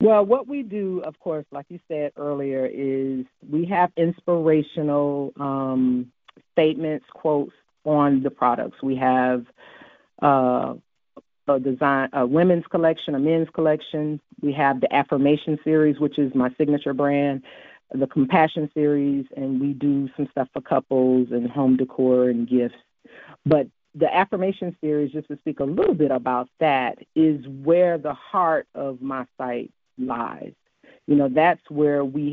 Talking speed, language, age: 150 wpm, English, 40-59